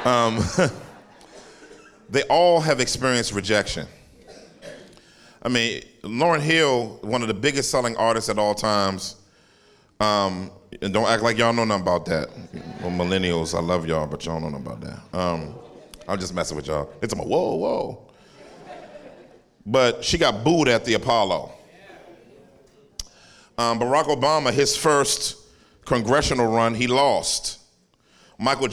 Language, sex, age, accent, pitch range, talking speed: English, male, 40-59, American, 100-125 Hz, 140 wpm